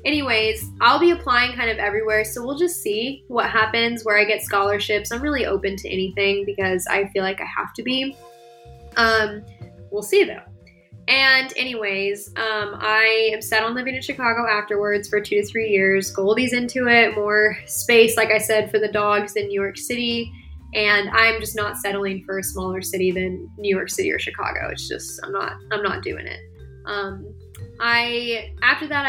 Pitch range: 190-230 Hz